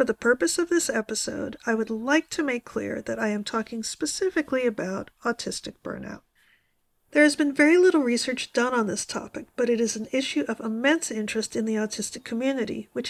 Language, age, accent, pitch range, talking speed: English, 50-69, American, 220-275 Hz, 195 wpm